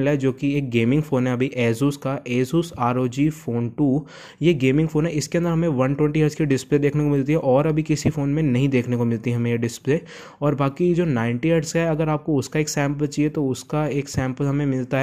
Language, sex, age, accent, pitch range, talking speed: Hindi, male, 20-39, native, 130-160 Hz, 225 wpm